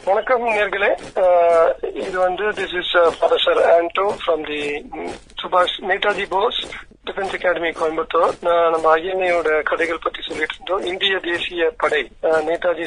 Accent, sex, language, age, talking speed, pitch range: native, male, Tamil, 50-69, 65 wpm, 165-205 Hz